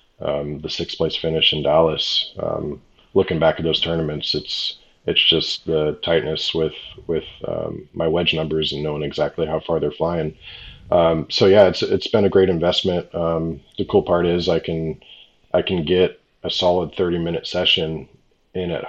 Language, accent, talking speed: English, American, 180 wpm